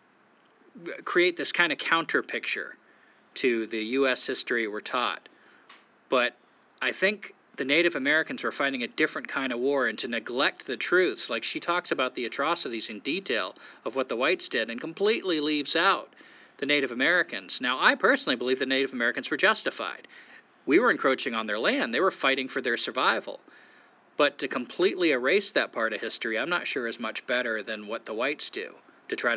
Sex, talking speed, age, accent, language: male, 190 wpm, 40-59, American, English